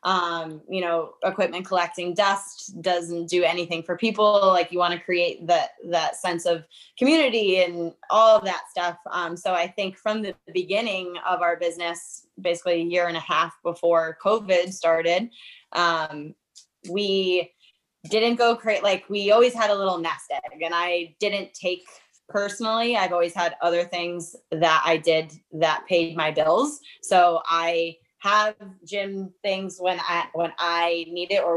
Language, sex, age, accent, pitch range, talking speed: English, female, 10-29, American, 165-195 Hz, 165 wpm